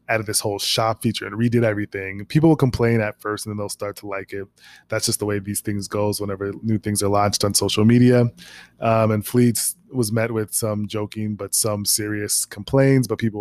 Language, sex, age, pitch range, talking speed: English, male, 20-39, 100-115 Hz, 225 wpm